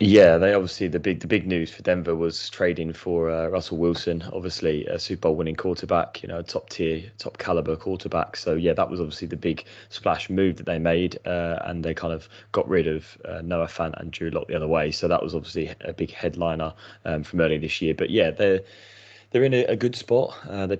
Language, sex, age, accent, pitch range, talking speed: English, male, 20-39, British, 80-95 Hz, 235 wpm